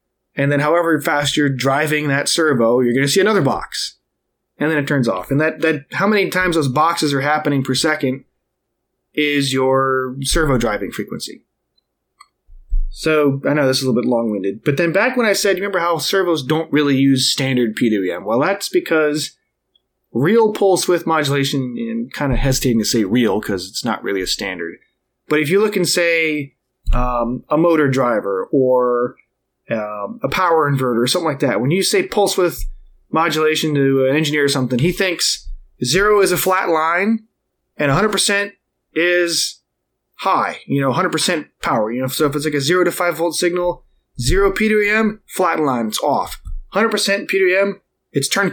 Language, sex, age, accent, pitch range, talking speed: English, male, 30-49, American, 130-180 Hz, 185 wpm